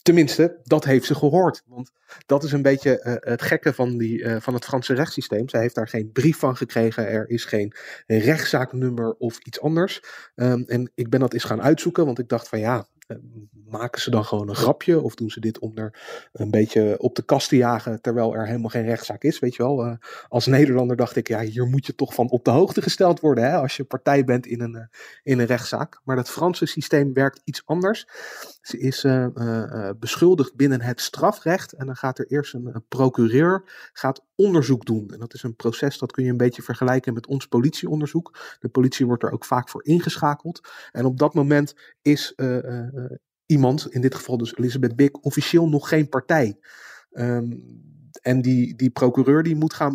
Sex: male